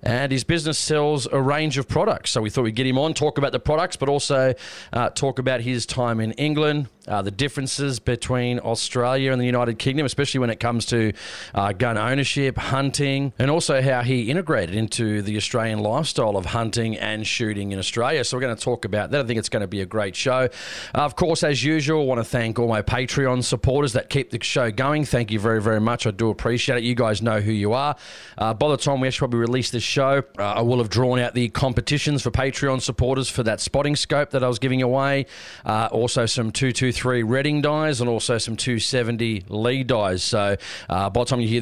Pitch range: 115-140 Hz